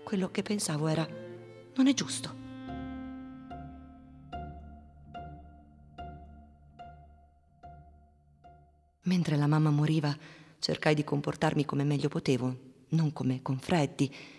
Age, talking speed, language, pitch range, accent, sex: 40-59, 90 wpm, Italian, 135-185 Hz, native, female